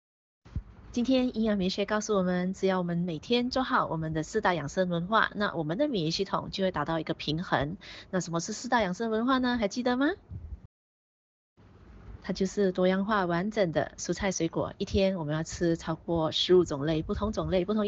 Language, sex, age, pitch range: Chinese, female, 20-39, 170-220 Hz